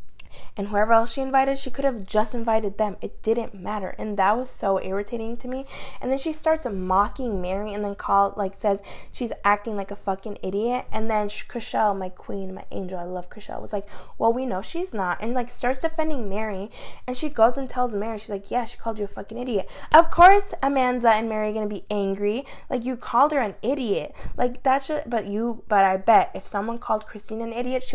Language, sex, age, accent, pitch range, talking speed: English, female, 20-39, American, 200-250 Hz, 225 wpm